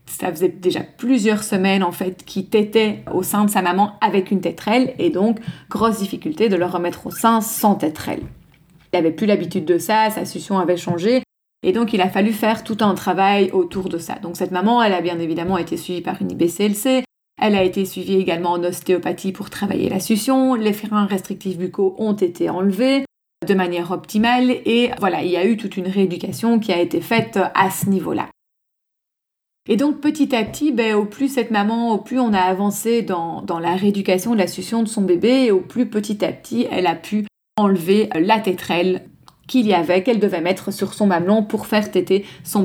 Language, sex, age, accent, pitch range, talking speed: French, female, 30-49, French, 185-230 Hz, 210 wpm